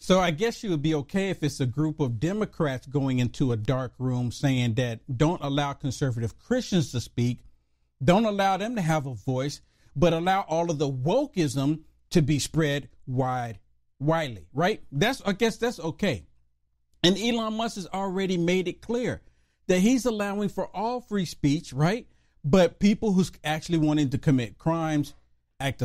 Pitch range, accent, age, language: 140-225 Hz, American, 50-69, English